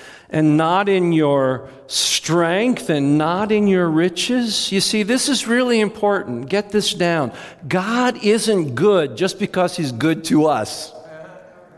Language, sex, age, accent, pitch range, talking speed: English, male, 50-69, American, 155-225 Hz, 145 wpm